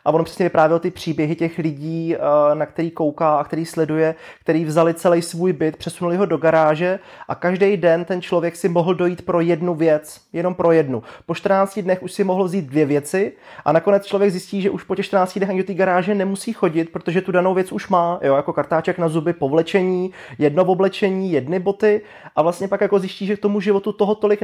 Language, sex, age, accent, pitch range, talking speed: Czech, male, 30-49, native, 160-190 Hz, 220 wpm